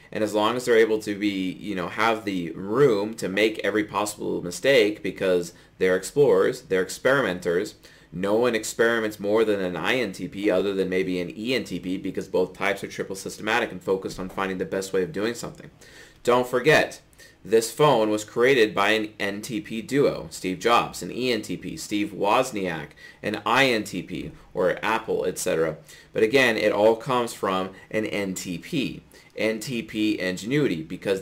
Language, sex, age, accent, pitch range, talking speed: English, male, 30-49, American, 95-115 Hz, 160 wpm